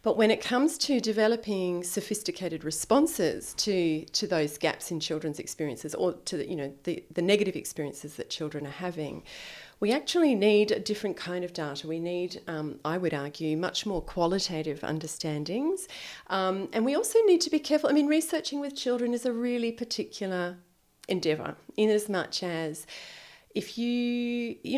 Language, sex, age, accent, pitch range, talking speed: English, female, 30-49, Australian, 160-230 Hz, 165 wpm